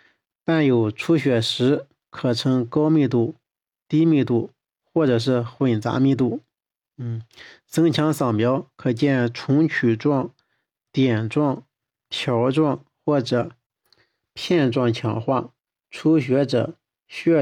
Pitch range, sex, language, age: 125-150 Hz, male, Chinese, 50-69